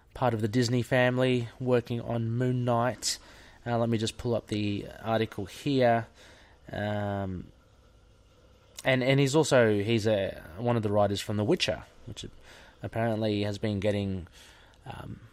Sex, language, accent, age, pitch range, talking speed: male, English, Australian, 20-39, 105-125 Hz, 150 wpm